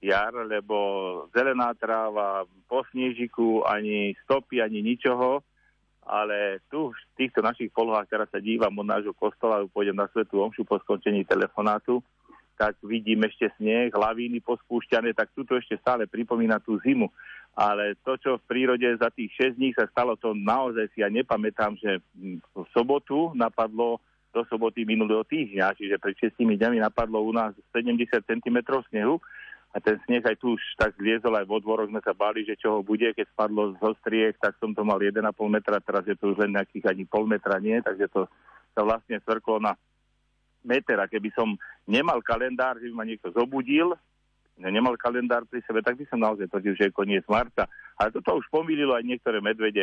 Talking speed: 180 wpm